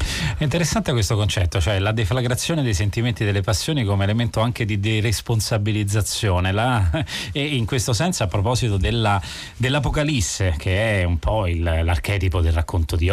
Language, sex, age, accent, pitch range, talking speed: Italian, male, 30-49, native, 95-120 Hz, 160 wpm